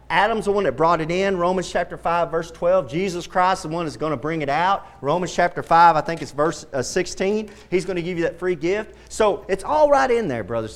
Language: English